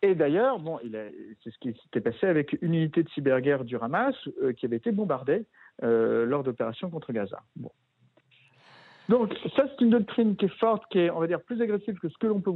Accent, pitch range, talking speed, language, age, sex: French, 145-220 Hz, 230 wpm, French, 50-69, male